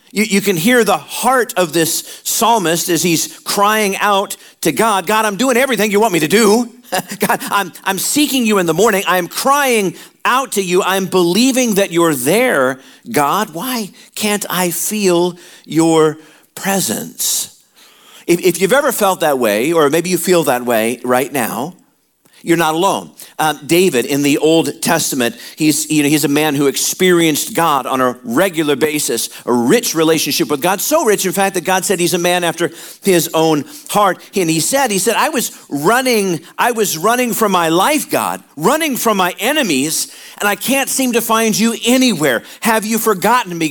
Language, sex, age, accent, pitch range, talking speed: English, male, 50-69, American, 165-215 Hz, 185 wpm